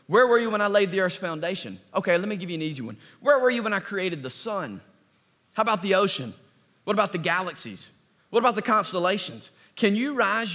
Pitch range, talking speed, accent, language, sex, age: 145-205 Hz, 230 wpm, American, English, male, 30-49